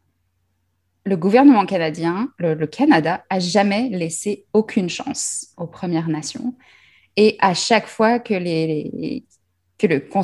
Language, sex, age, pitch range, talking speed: French, female, 20-39, 165-220 Hz, 140 wpm